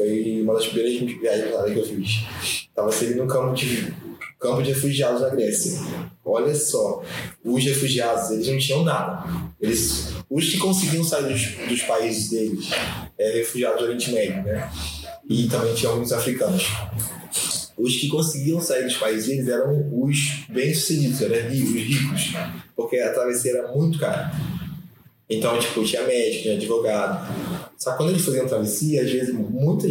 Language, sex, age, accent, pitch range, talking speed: Portuguese, male, 20-39, Brazilian, 120-155 Hz, 160 wpm